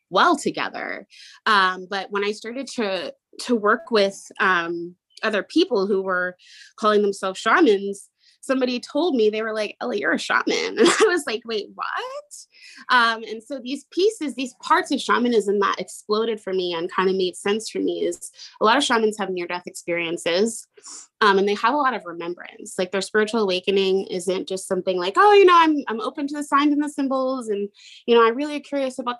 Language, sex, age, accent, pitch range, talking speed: English, female, 20-39, American, 190-250 Hz, 200 wpm